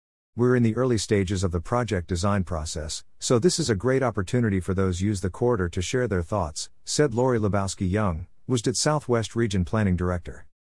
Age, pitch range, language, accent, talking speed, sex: 50-69, 90-115 Hz, English, American, 185 wpm, male